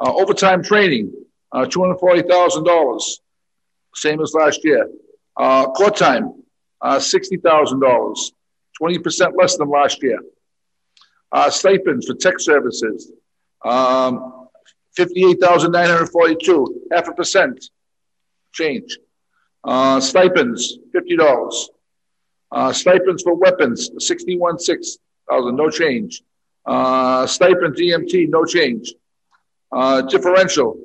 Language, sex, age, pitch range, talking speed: English, male, 50-69, 155-190 Hz, 95 wpm